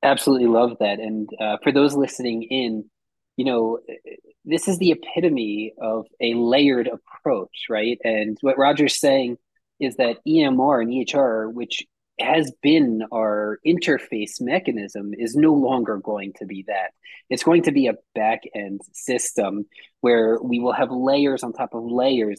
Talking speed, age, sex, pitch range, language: 155 wpm, 20-39, male, 115-150 Hz, English